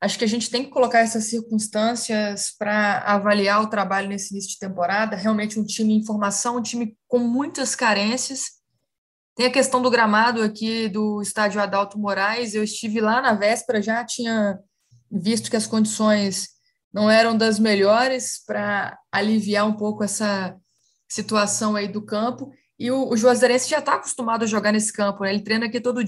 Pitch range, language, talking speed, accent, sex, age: 210-240 Hz, Portuguese, 175 wpm, Brazilian, female, 20-39